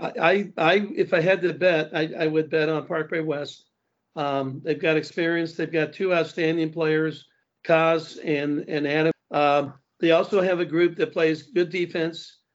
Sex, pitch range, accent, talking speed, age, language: male, 145-165 Hz, American, 175 wpm, 60-79, English